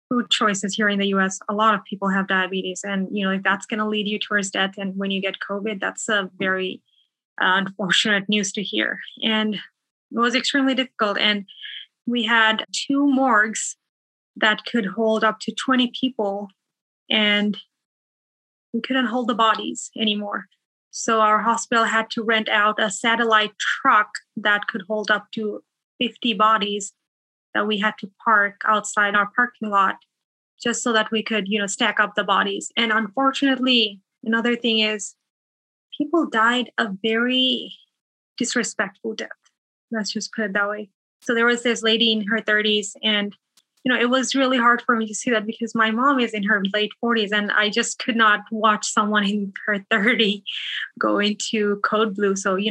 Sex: female